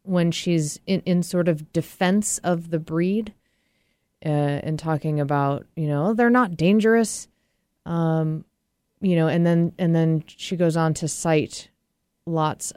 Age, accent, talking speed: 30-49, American, 150 wpm